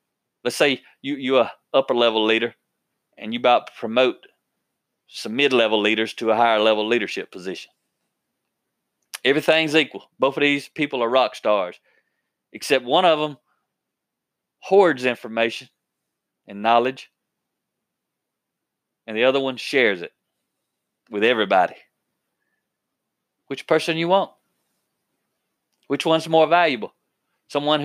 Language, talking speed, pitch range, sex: English, 115 wpm, 130-175 Hz, male